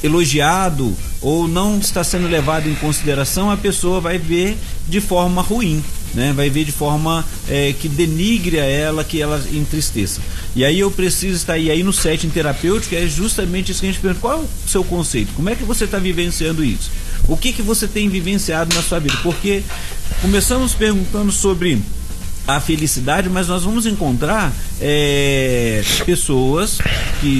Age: 40-59